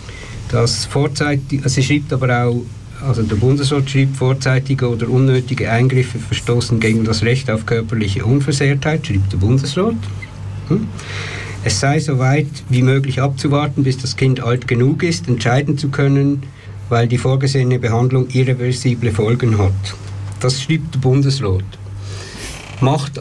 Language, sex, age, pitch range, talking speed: German, male, 60-79, 110-135 Hz, 135 wpm